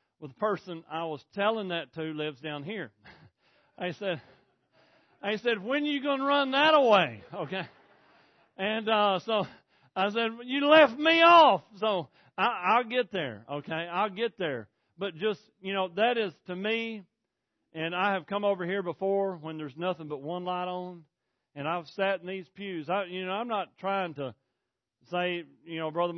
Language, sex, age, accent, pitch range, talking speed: English, male, 40-59, American, 145-195 Hz, 190 wpm